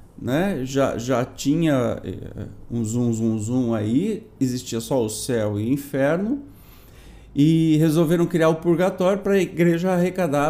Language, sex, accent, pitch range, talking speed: Portuguese, male, Brazilian, 115-170 Hz, 135 wpm